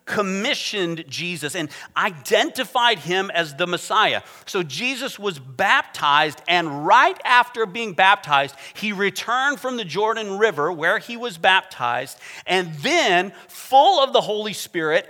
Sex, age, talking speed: male, 40-59, 135 wpm